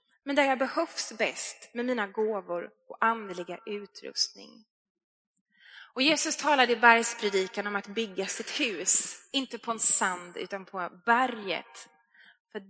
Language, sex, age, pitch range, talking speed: Swedish, female, 20-39, 195-245 Hz, 135 wpm